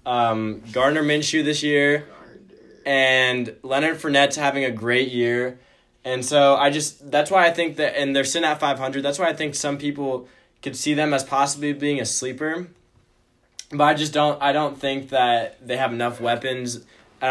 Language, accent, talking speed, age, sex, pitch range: English, American, 185 wpm, 10-29, male, 120-145 Hz